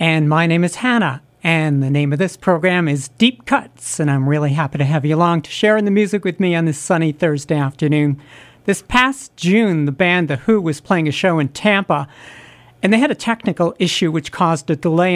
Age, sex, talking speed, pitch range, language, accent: 50-69, male, 225 wpm, 155-190 Hz, English, American